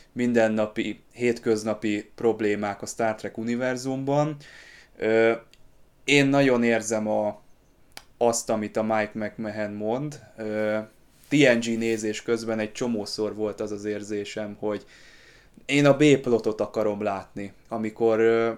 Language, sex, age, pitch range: Hungarian, male, 20-39, 105-120 Hz